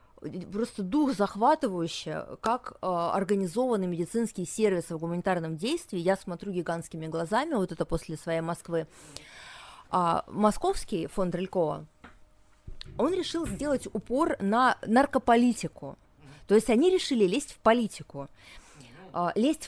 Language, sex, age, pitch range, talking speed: Russian, female, 20-39, 180-240 Hz, 115 wpm